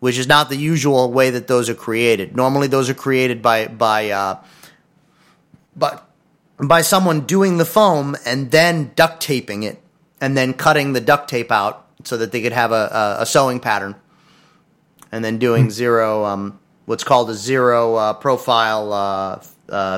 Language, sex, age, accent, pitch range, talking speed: English, male, 30-49, American, 120-165 Hz, 175 wpm